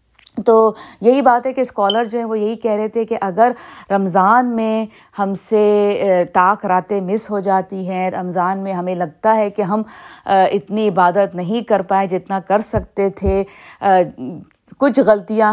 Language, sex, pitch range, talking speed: Urdu, female, 185-220 Hz, 165 wpm